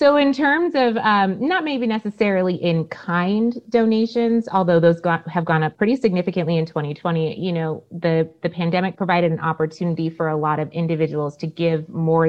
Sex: female